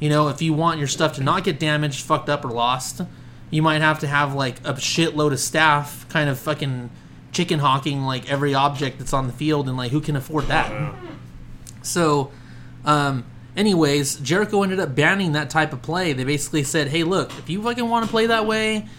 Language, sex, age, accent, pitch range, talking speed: English, male, 20-39, American, 135-160 Hz, 210 wpm